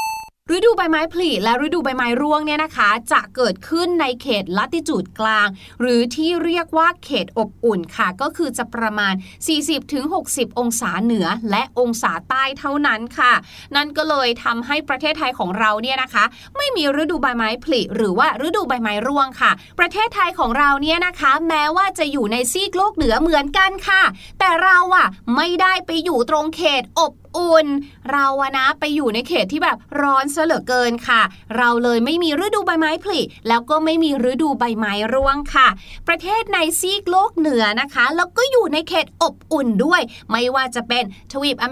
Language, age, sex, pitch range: Thai, 20-39, female, 245-335 Hz